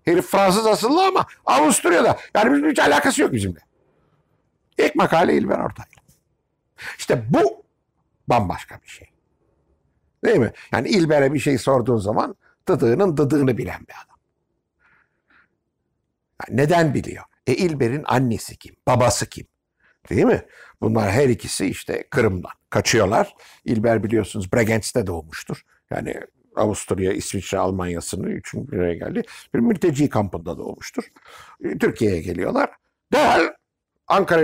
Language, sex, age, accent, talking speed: Turkish, male, 60-79, native, 120 wpm